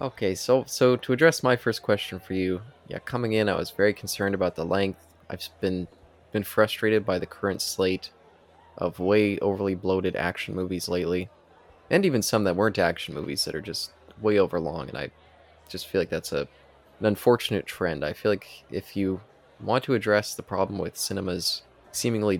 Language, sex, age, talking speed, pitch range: English, male, 20-39, 190 wpm, 90-105 Hz